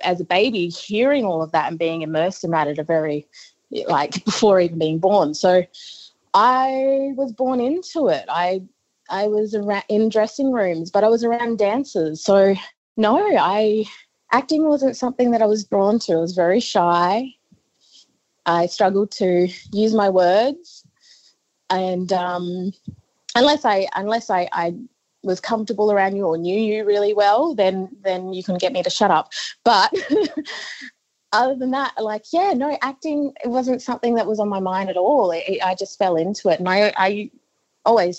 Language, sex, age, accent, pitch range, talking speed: English, female, 20-39, Australian, 180-230 Hz, 180 wpm